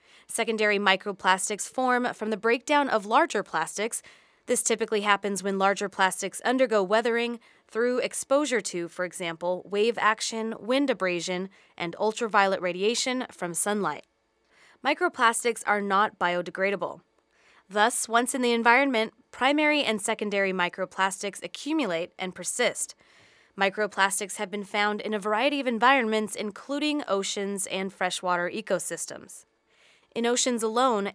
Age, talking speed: 20-39, 125 wpm